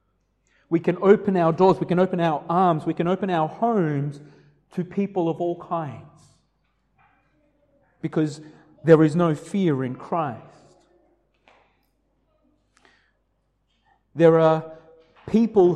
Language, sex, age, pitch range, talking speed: English, male, 30-49, 140-175 Hz, 115 wpm